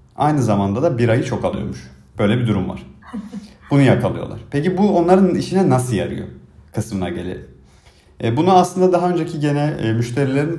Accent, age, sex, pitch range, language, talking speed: native, 40-59, male, 110-135 Hz, Turkish, 155 wpm